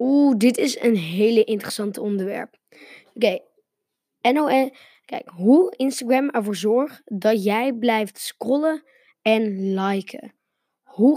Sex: female